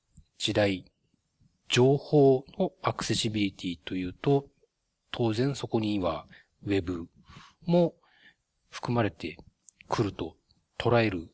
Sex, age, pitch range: male, 40-59, 95-135 Hz